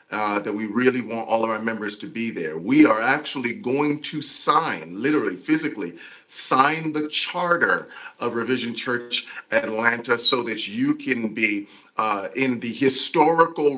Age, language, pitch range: 40-59, English, 105-135 Hz